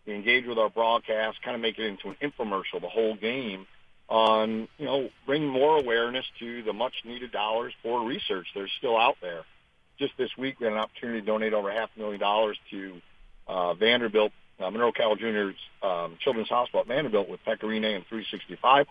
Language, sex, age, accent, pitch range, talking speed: English, male, 50-69, American, 105-125 Hz, 190 wpm